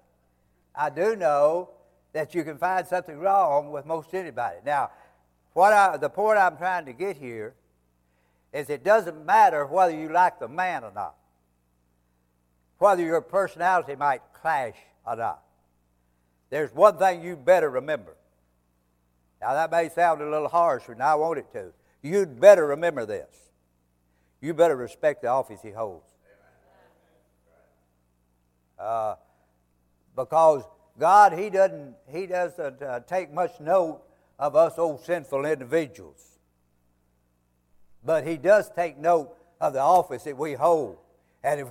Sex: male